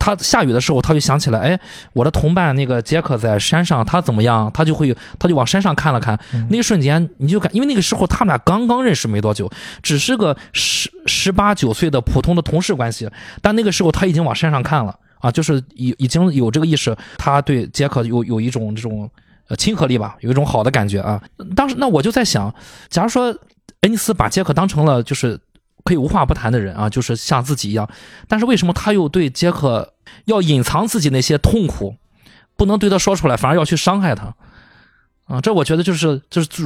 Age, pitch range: 20-39, 125-175 Hz